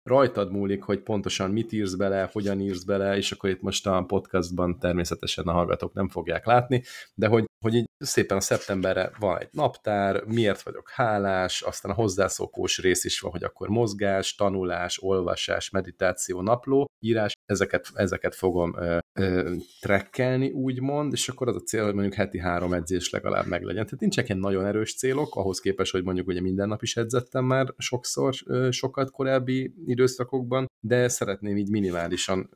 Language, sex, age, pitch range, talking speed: Hungarian, male, 30-49, 95-120 Hz, 170 wpm